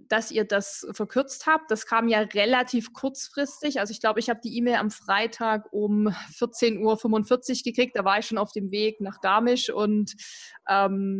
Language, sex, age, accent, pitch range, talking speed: German, female, 20-39, German, 205-255 Hz, 180 wpm